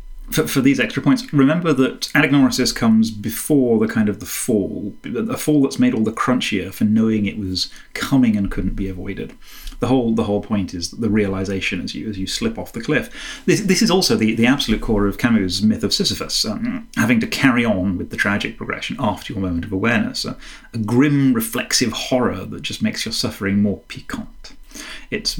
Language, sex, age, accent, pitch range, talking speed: English, male, 30-49, British, 105-165 Hz, 200 wpm